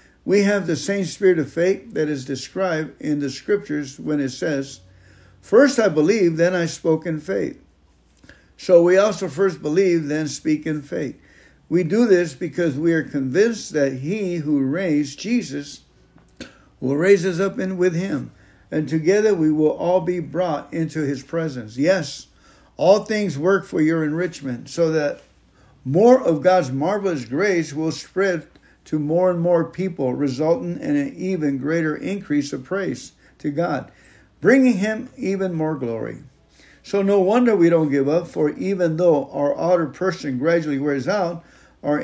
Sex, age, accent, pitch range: male, 60-79, American, 150-185 Hz